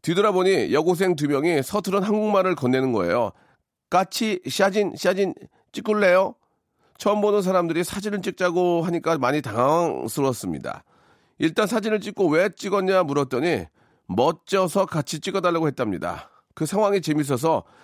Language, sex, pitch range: Korean, male, 115-180 Hz